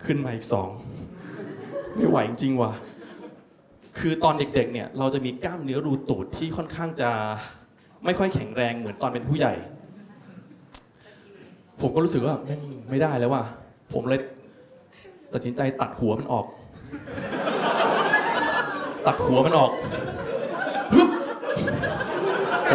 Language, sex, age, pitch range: Thai, male, 20-39, 135-205 Hz